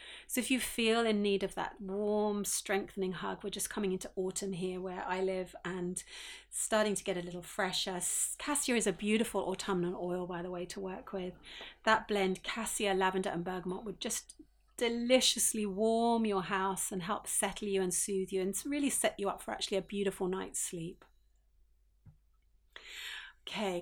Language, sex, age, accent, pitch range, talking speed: English, female, 30-49, British, 185-215 Hz, 175 wpm